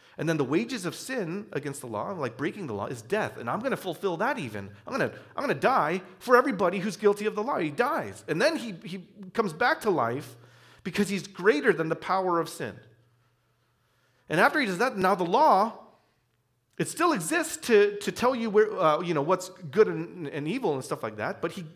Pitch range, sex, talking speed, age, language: 130-215 Hz, male, 225 wpm, 40-59, English